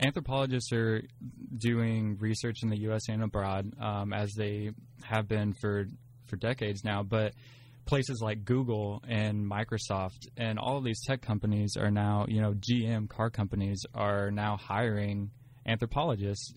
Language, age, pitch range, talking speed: English, 10-29, 105-125 Hz, 150 wpm